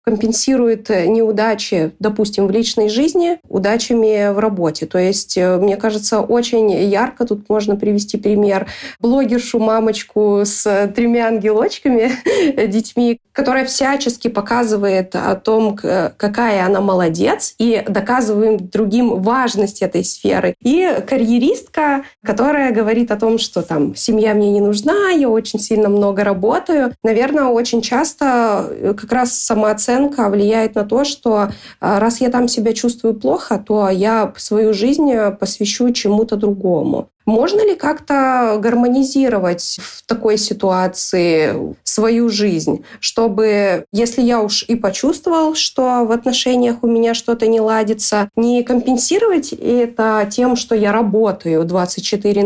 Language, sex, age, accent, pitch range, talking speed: Russian, female, 20-39, native, 205-245 Hz, 125 wpm